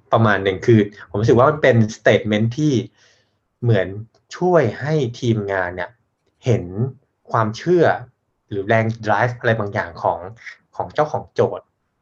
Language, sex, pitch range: Thai, male, 100-125 Hz